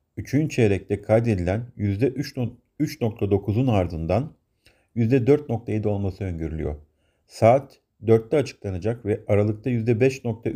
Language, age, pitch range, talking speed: Turkish, 50-69, 100-125 Hz, 80 wpm